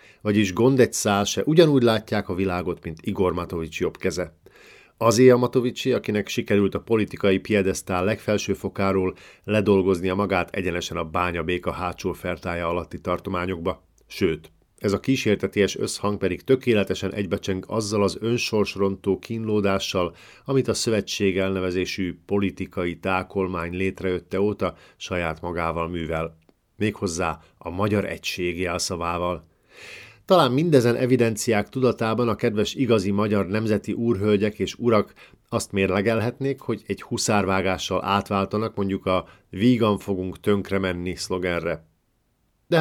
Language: Hungarian